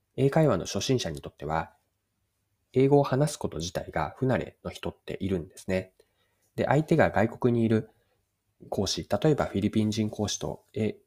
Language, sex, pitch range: Japanese, male, 95-125 Hz